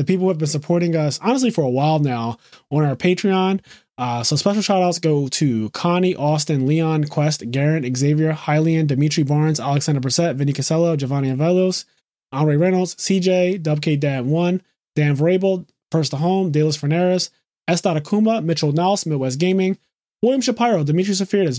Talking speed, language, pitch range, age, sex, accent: 165 wpm, English, 140-185 Hz, 20-39, male, American